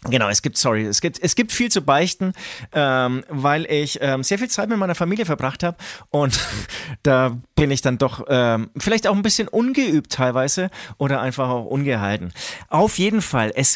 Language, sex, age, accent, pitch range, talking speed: German, male, 30-49, German, 125-170 Hz, 190 wpm